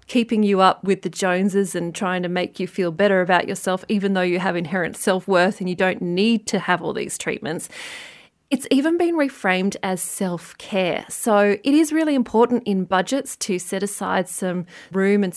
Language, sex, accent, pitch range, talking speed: English, female, Australian, 190-245 Hz, 200 wpm